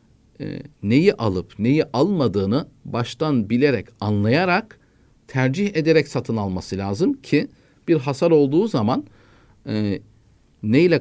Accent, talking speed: native, 110 wpm